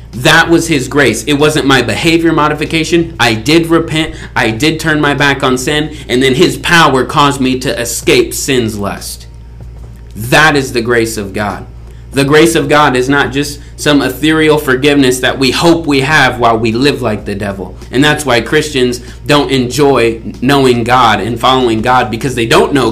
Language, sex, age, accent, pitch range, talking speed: English, male, 30-49, American, 115-165 Hz, 185 wpm